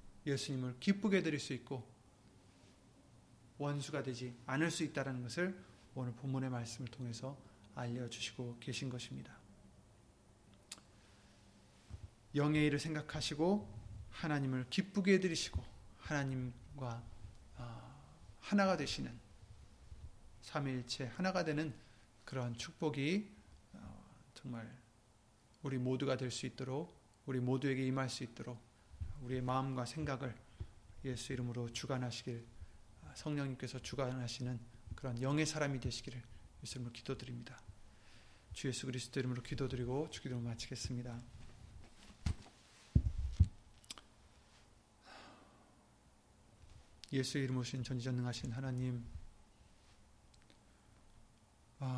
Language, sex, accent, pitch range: Korean, male, native, 110-135 Hz